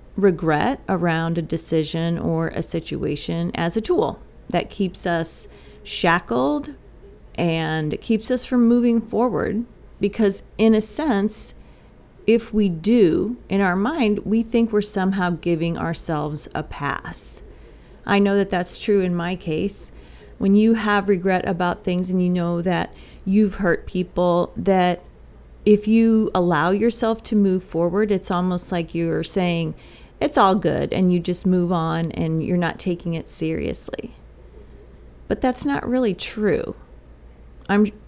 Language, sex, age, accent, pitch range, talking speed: English, female, 40-59, American, 165-210 Hz, 145 wpm